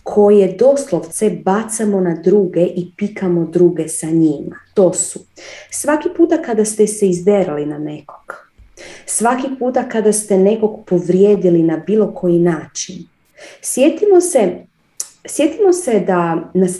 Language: Croatian